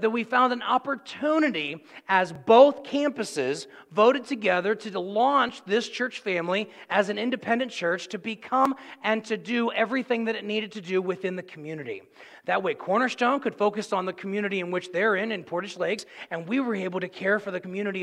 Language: English